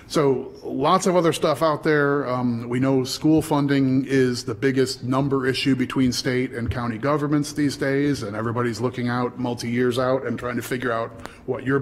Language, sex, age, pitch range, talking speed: English, male, 30-49, 125-140 Hz, 195 wpm